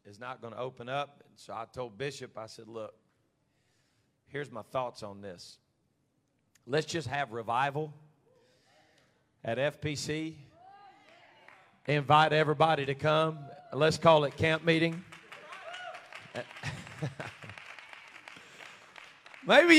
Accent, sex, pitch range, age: American, male, 150-210 Hz, 40-59